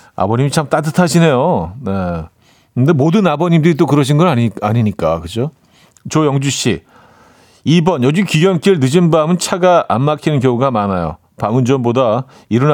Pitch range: 110-150 Hz